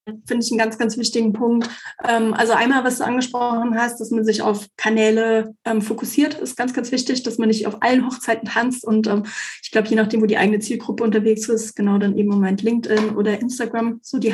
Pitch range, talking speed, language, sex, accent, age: 215-250 Hz, 215 wpm, German, female, German, 20-39